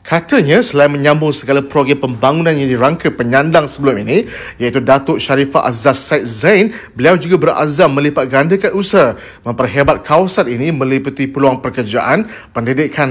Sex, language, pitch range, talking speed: male, Malay, 135-195 Hz, 135 wpm